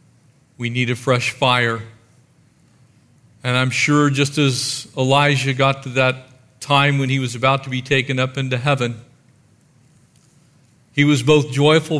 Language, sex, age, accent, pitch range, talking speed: English, male, 50-69, American, 125-140 Hz, 145 wpm